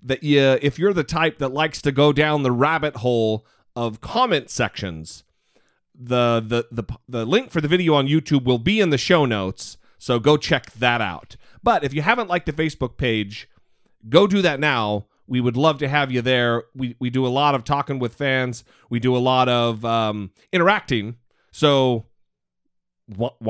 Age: 30-49